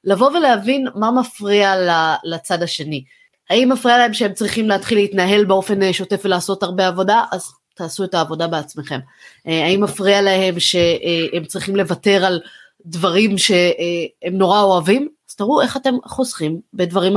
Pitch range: 190-245 Hz